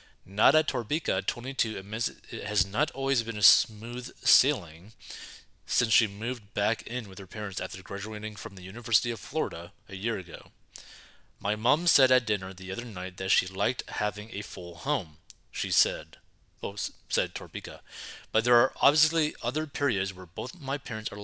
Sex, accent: male, American